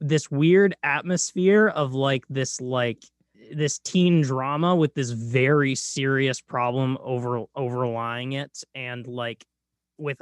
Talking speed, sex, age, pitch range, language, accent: 125 wpm, male, 20-39, 115-150 Hz, English, American